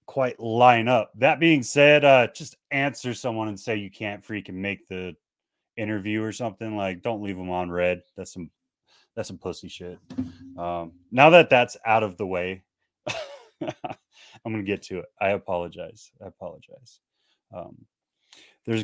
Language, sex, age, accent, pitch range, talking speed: English, male, 30-49, American, 90-110 Hz, 160 wpm